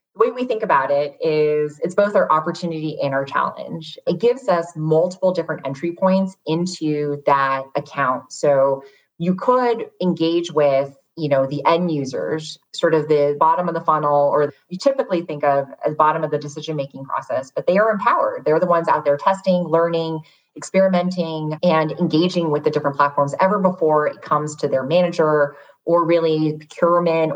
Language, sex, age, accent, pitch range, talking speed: English, female, 20-39, American, 145-175 Hz, 175 wpm